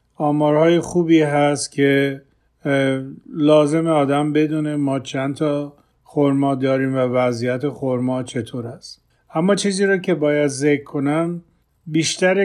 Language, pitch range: Persian, 135-155 Hz